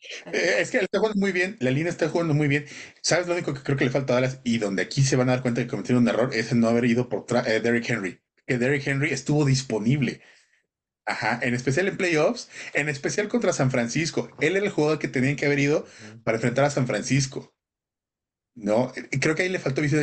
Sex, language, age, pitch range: male, Spanish, 30-49, 125-150 Hz